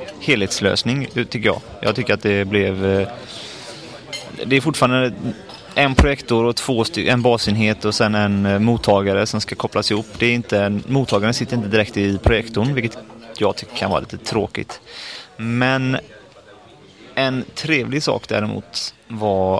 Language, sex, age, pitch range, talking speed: English, male, 30-49, 100-120 Hz, 135 wpm